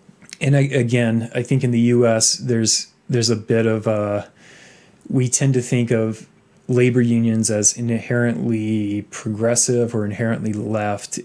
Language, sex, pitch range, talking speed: English, male, 110-125 Hz, 145 wpm